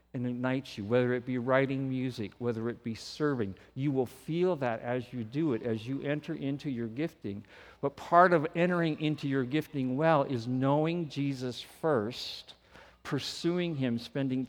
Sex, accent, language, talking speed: male, American, English, 170 wpm